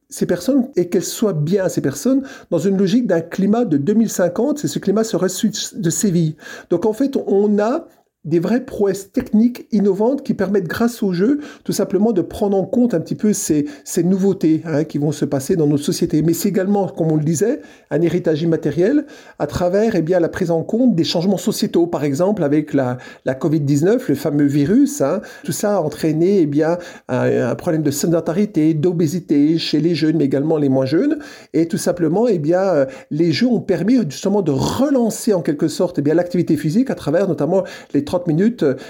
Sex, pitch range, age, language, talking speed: male, 160-220 Hz, 50-69, French, 205 wpm